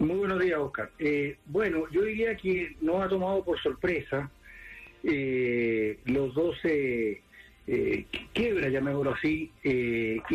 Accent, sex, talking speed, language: Argentinian, male, 130 wpm, English